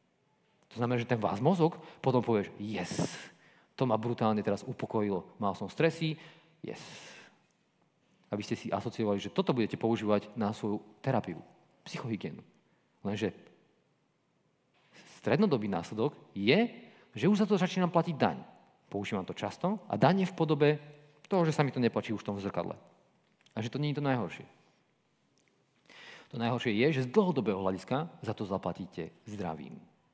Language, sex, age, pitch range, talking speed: Czech, male, 40-59, 105-160 Hz, 150 wpm